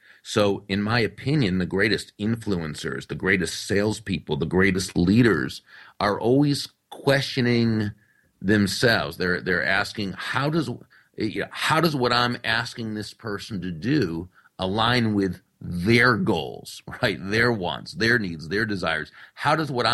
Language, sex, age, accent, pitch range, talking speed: English, male, 40-59, American, 95-130 Hz, 135 wpm